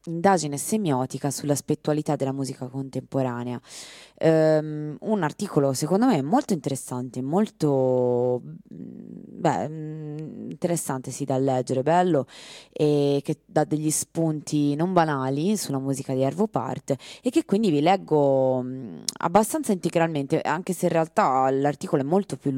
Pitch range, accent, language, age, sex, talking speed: 135-160 Hz, native, Italian, 20-39, female, 125 wpm